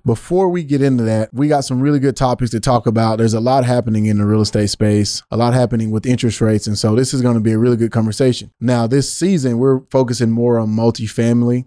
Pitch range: 110-130 Hz